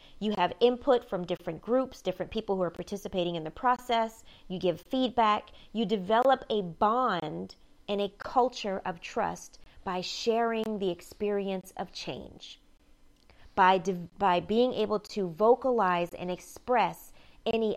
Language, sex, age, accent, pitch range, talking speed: English, female, 30-49, American, 185-240 Hz, 140 wpm